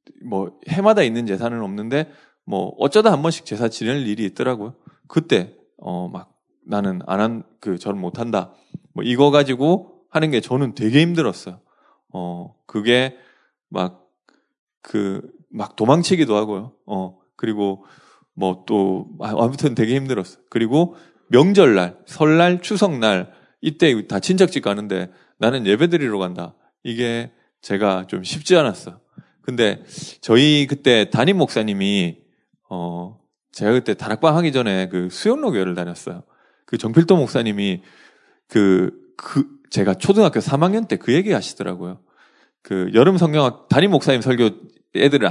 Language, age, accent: Korean, 20-39, native